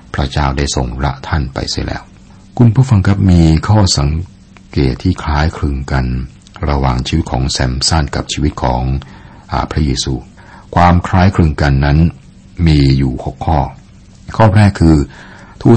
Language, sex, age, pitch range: Thai, male, 60-79, 65-90 Hz